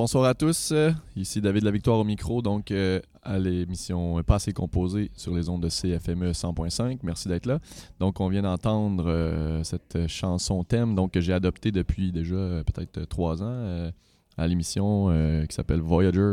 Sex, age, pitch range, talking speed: male, 20-39, 85-105 Hz, 180 wpm